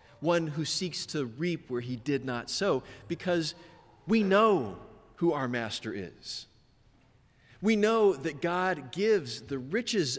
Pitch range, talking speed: 125-190 Hz, 140 wpm